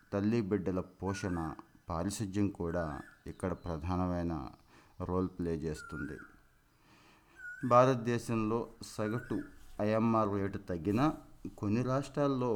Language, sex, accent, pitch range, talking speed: Telugu, male, native, 90-110 Hz, 80 wpm